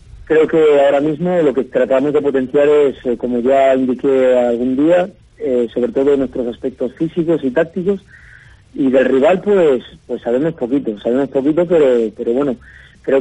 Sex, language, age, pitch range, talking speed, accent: male, Spanish, 40-59, 125-145 Hz, 170 wpm, Spanish